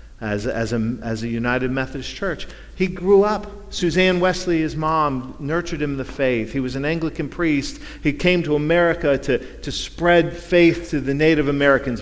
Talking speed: 180 wpm